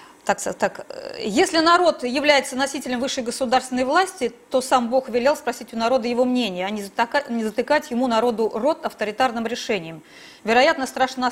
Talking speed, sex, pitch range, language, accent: 150 wpm, female, 220-295 Hz, Russian, native